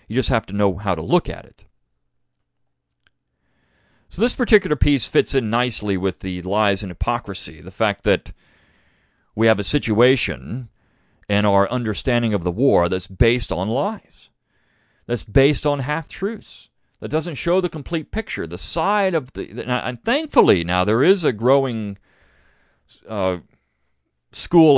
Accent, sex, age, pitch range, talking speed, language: American, male, 40-59, 95-130 Hz, 150 wpm, English